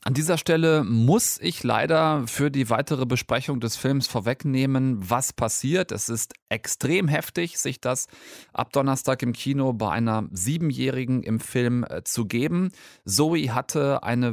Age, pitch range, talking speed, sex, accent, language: 30-49, 115-150 Hz, 145 wpm, male, German, German